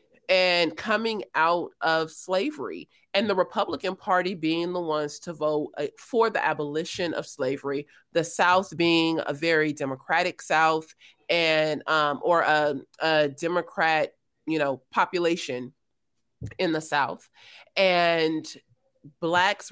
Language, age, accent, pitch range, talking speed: English, 30-49, American, 155-200 Hz, 120 wpm